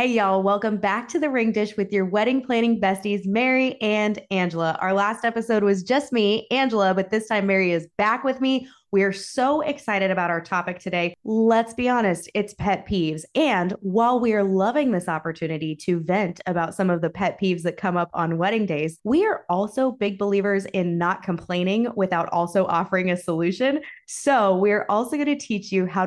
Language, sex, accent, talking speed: English, female, American, 200 wpm